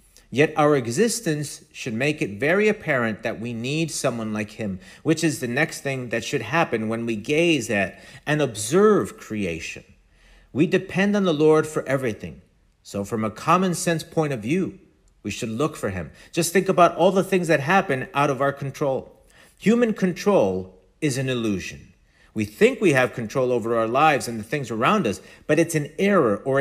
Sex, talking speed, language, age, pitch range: male, 190 wpm, English, 50-69, 120-170 Hz